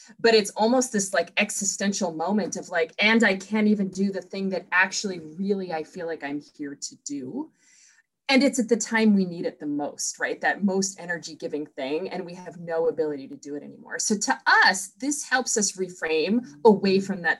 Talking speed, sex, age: 210 wpm, female, 20-39